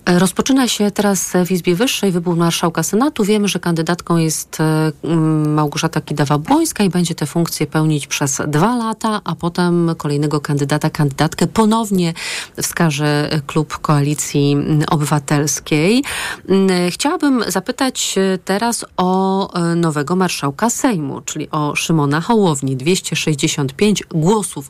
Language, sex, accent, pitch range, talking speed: Polish, female, native, 150-190 Hz, 110 wpm